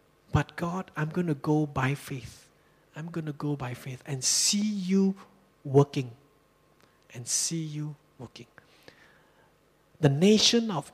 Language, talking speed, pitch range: English, 135 wpm, 135-170 Hz